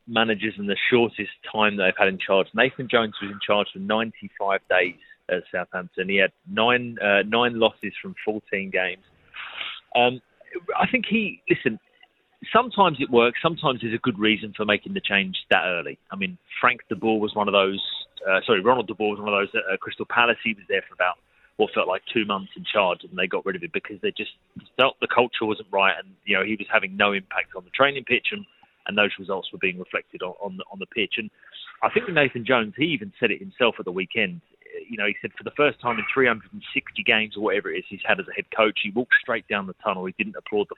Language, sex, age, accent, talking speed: English, male, 30-49, British, 240 wpm